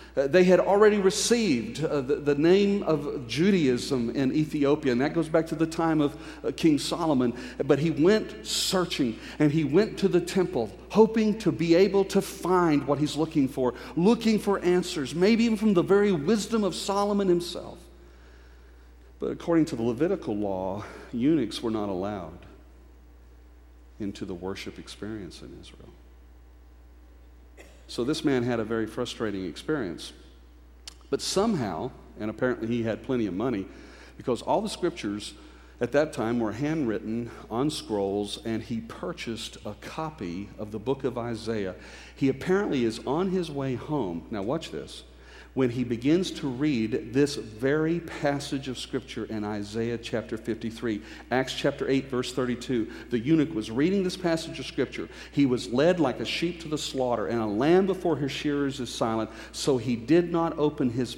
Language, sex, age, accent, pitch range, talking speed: English, male, 50-69, American, 110-165 Hz, 165 wpm